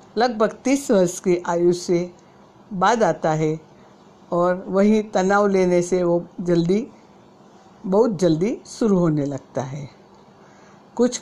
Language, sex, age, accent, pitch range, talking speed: Hindi, female, 60-79, native, 170-200 Hz, 125 wpm